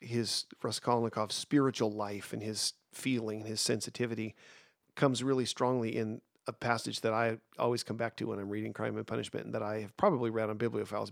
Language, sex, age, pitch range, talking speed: English, male, 40-59, 110-130 Hz, 195 wpm